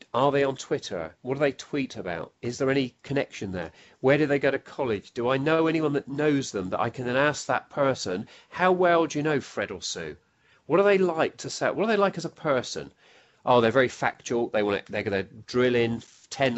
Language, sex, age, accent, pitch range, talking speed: English, male, 40-59, British, 115-150 Hz, 245 wpm